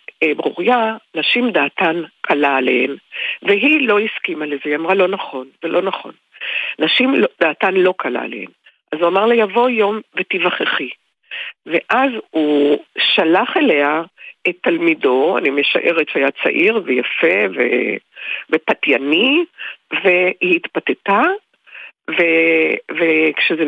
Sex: female